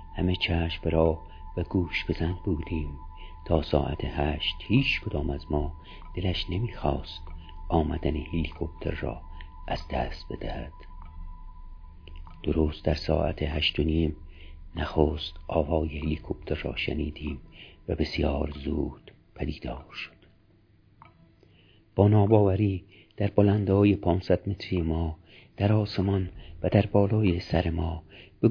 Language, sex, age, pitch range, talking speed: Persian, male, 50-69, 75-95 Hz, 110 wpm